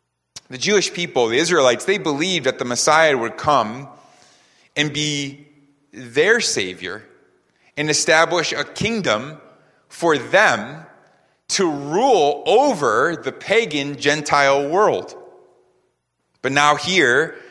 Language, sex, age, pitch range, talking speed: English, male, 30-49, 130-170 Hz, 110 wpm